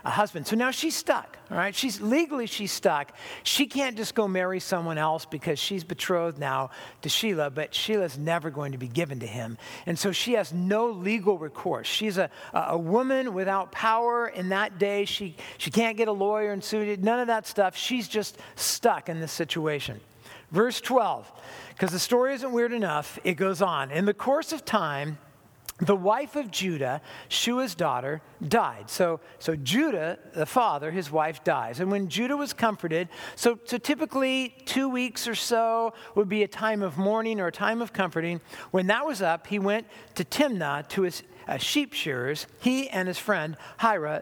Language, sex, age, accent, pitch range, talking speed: English, male, 50-69, American, 170-235 Hz, 190 wpm